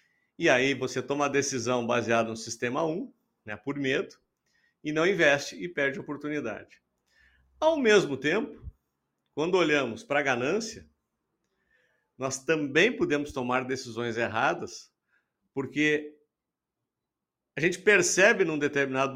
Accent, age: Brazilian, 50-69